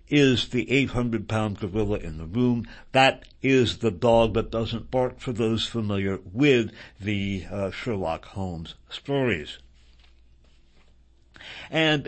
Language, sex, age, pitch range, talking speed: English, male, 60-79, 105-140 Hz, 120 wpm